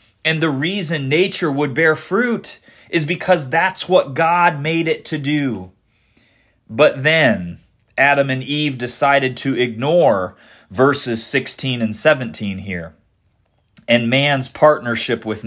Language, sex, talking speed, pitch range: English, male, 130 wpm, 110-145 Hz